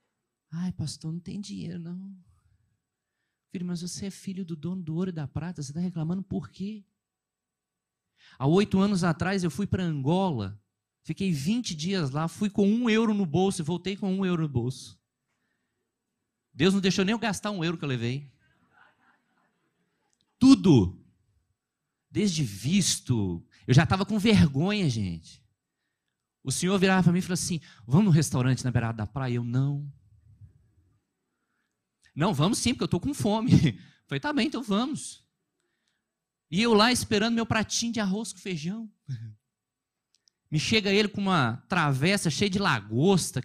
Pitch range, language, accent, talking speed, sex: 125-190 Hz, Portuguese, Brazilian, 160 wpm, male